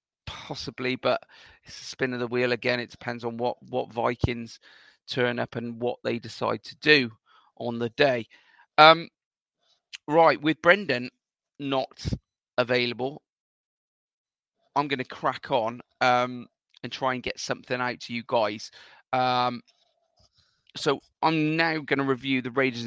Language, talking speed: English, 140 wpm